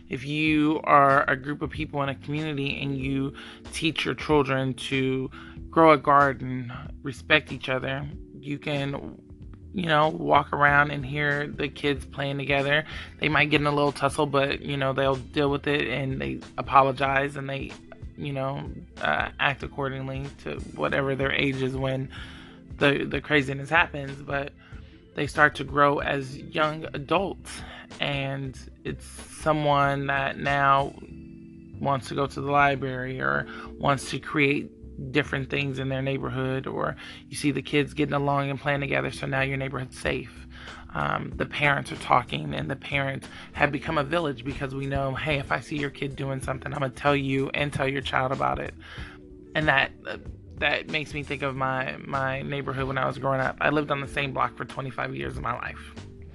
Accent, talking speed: American, 185 wpm